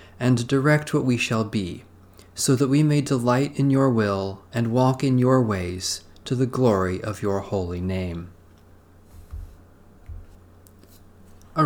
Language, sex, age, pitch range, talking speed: English, male, 40-59, 95-125 Hz, 140 wpm